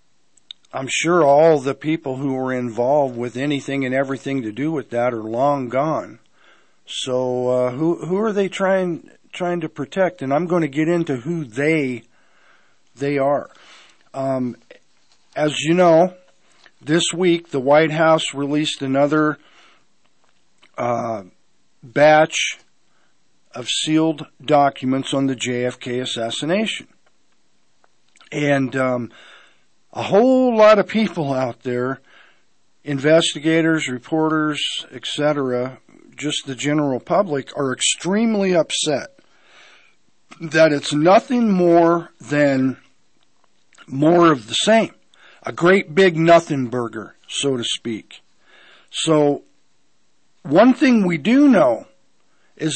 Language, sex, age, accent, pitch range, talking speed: English, male, 50-69, American, 135-170 Hz, 115 wpm